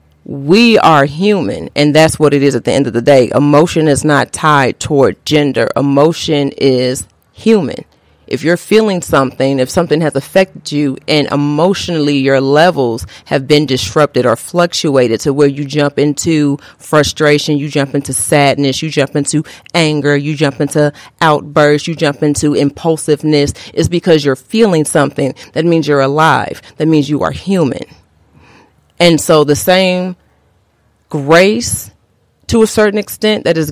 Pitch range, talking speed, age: 135-165 Hz, 155 wpm, 40-59